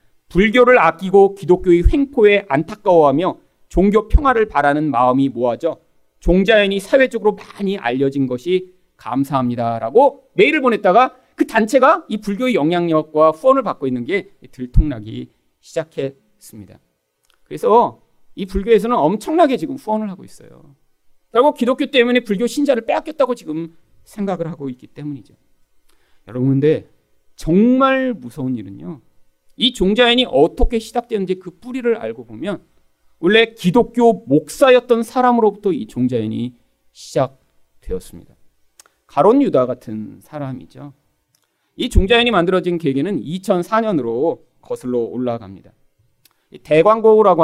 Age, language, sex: 40-59, Korean, male